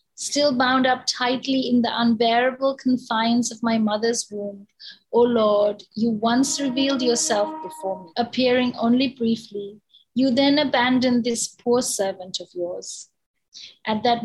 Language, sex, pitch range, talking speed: English, female, 220-255 Hz, 140 wpm